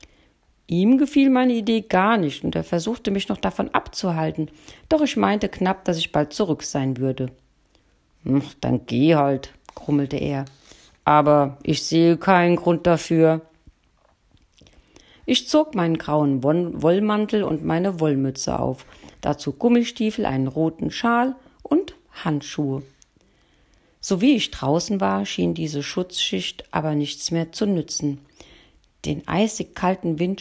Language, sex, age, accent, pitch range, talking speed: German, female, 50-69, German, 145-210 Hz, 130 wpm